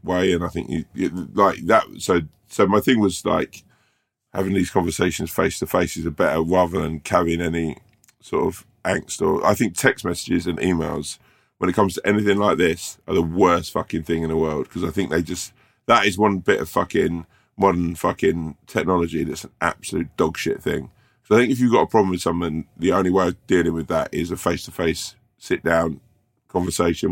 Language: English